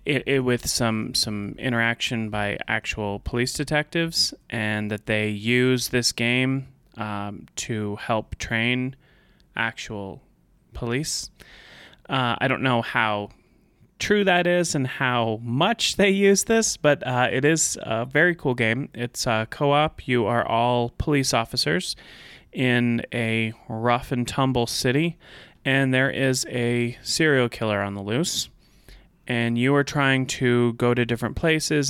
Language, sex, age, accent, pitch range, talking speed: English, male, 30-49, American, 115-140 Hz, 145 wpm